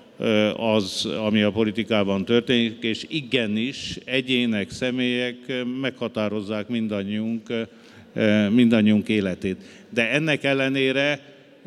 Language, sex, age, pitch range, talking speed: Hungarian, male, 50-69, 105-130 Hz, 80 wpm